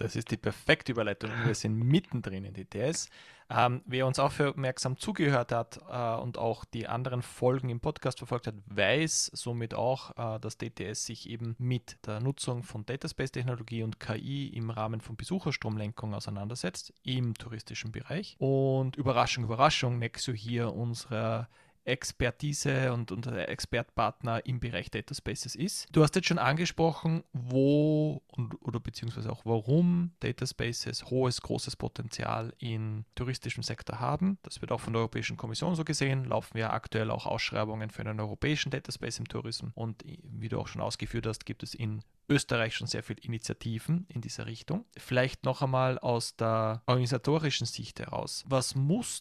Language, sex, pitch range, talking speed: German, male, 115-135 Hz, 165 wpm